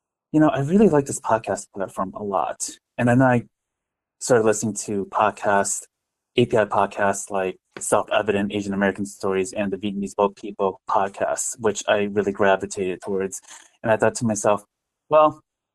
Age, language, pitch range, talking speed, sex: 30-49, English, 100-115 Hz, 155 wpm, male